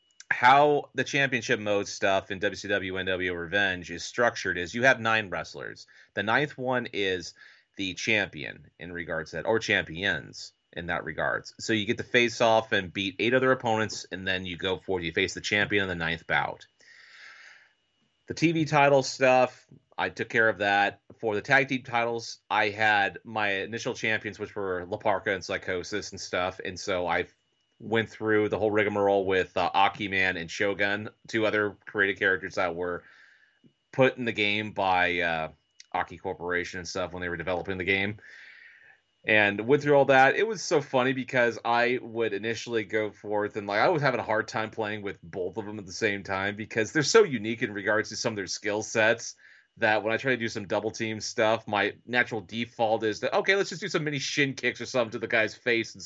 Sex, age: male, 30-49